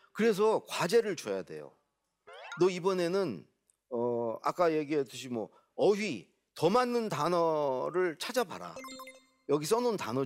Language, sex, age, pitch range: Korean, male, 40-59, 140-235 Hz